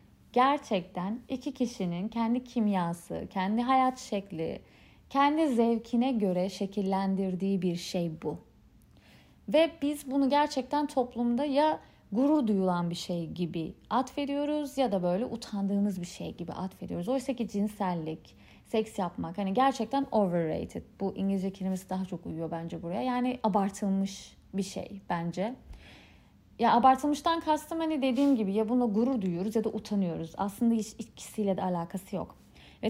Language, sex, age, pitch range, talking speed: Turkish, female, 30-49, 190-260 Hz, 140 wpm